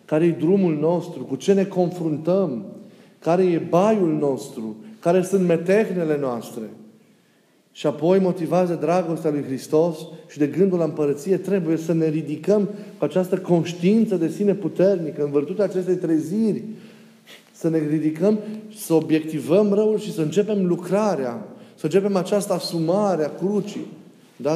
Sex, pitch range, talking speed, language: male, 155-190 Hz, 140 wpm, Romanian